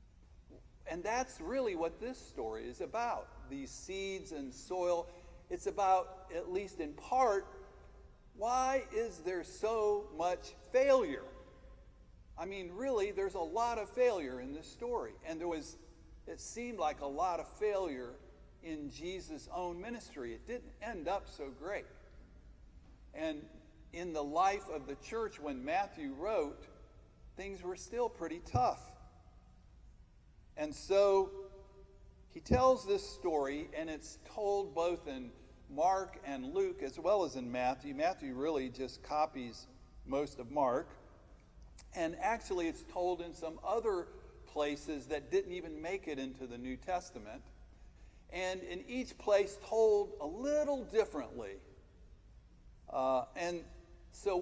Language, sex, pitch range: English, male, 145-235 Hz